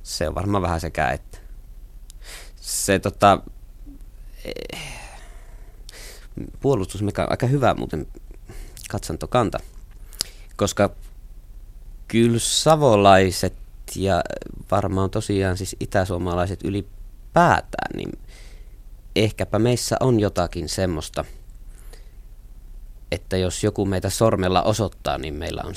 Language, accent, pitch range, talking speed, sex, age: Finnish, native, 90-100 Hz, 90 wpm, male, 20-39